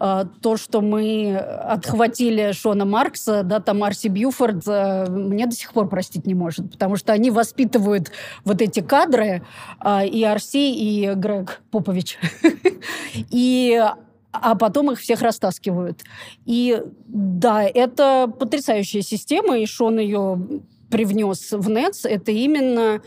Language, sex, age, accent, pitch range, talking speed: Russian, female, 20-39, native, 200-240 Hz, 120 wpm